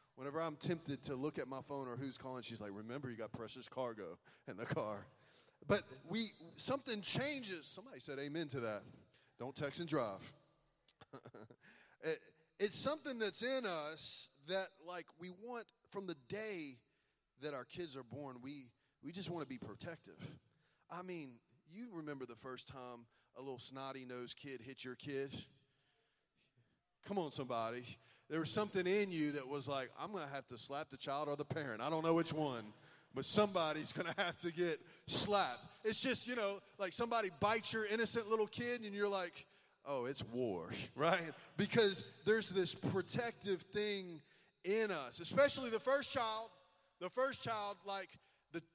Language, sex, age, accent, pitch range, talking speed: English, male, 30-49, American, 135-195 Hz, 175 wpm